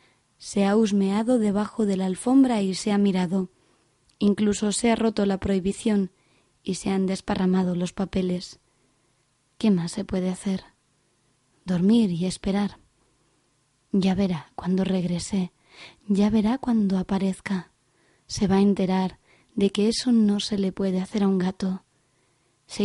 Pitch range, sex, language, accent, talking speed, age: 185-210 Hz, female, Spanish, Spanish, 145 wpm, 20-39